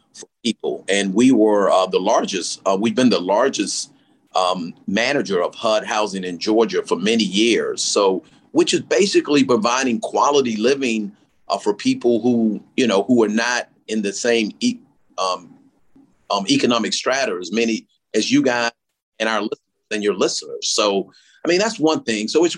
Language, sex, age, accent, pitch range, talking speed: English, male, 40-59, American, 110-130 Hz, 175 wpm